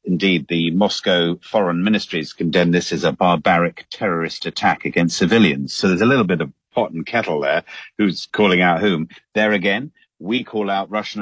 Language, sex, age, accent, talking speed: English, male, 50-69, British, 180 wpm